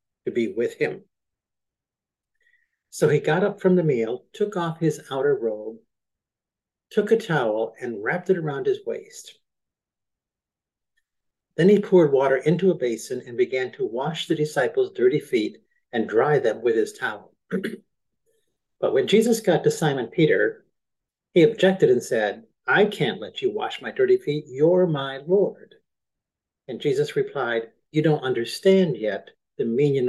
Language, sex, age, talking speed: English, male, 50-69, 155 wpm